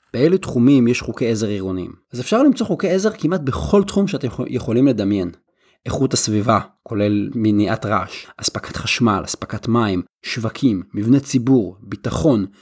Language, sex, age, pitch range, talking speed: Hebrew, male, 30-49, 110-150 Hz, 145 wpm